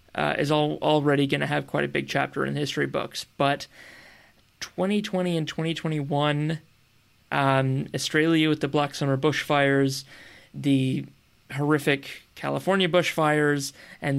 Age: 20-39